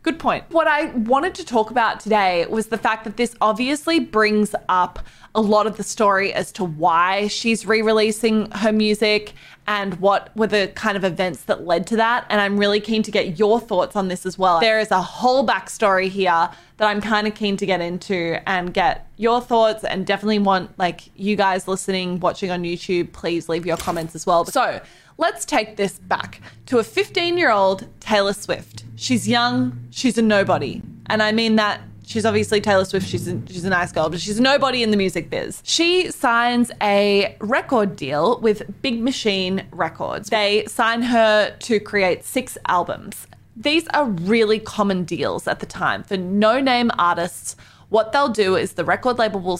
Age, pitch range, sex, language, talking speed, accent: 20-39, 190-230 Hz, female, English, 190 wpm, Australian